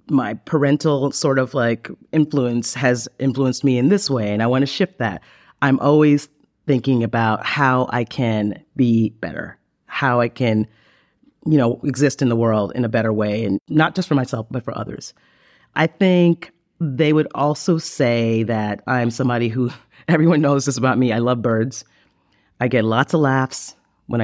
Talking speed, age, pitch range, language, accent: 180 wpm, 40-59, 115-145 Hz, English, American